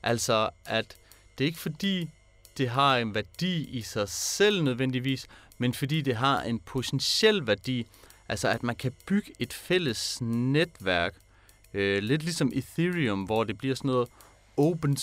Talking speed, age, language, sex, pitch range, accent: 150 wpm, 30-49, Danish, male, 100-145 Hz, native